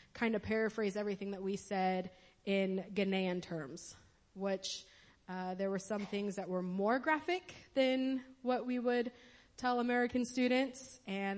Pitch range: 185-215 Hz